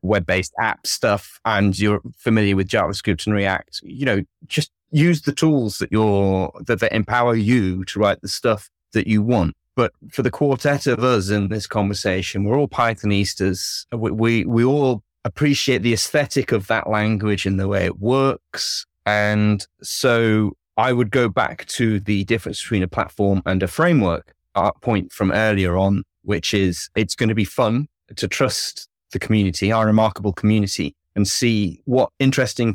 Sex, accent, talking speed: male, British, 170 wpm